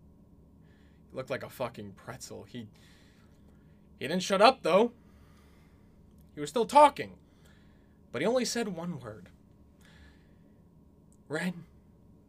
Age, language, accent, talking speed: 20-39, English, American, 110 wpm